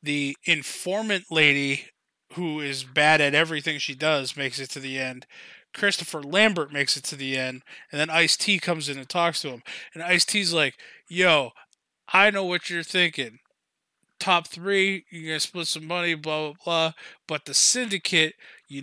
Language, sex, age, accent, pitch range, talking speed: English, male, 20-39, American, 145-180 Hz, 175 wpm